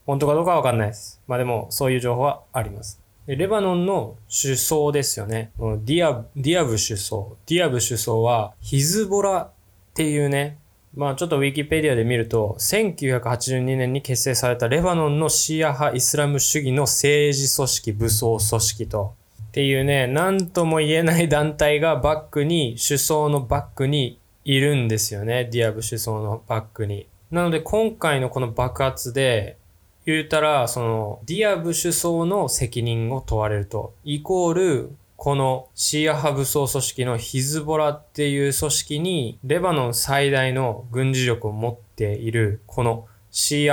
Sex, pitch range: male, 115-150 Hz